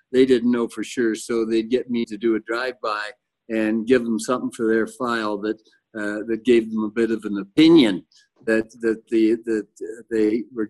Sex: male